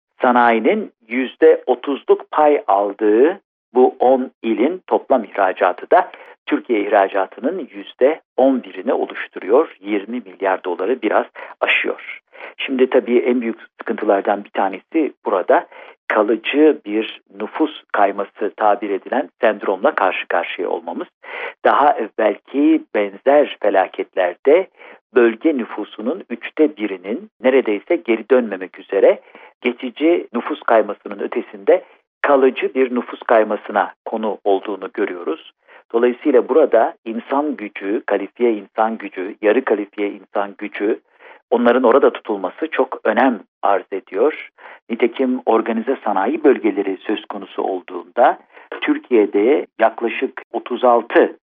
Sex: male